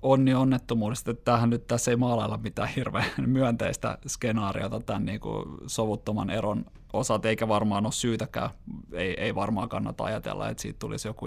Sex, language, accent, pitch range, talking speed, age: male, Finnish, native, 100-120 Hz, 160 wpm, 20-39